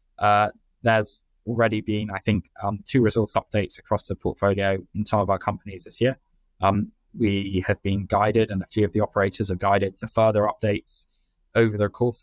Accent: British